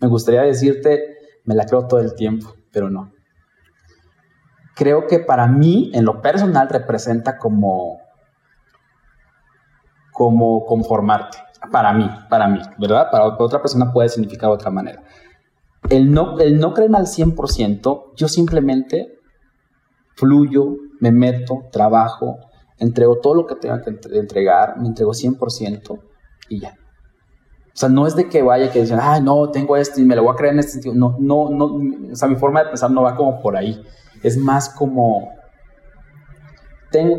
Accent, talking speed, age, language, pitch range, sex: Mexican, 160 wpm, 30-49, Spanish, 110-145 Hz, male